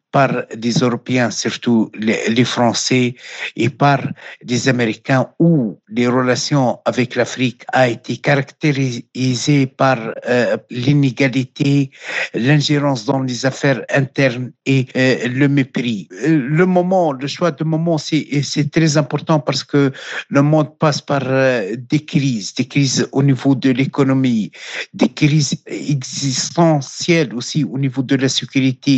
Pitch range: 130-150 Hz